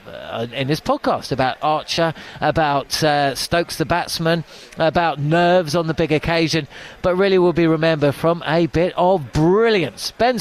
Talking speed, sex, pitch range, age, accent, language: 155 wpm, male, 150-185 Hz, 40-59, British, English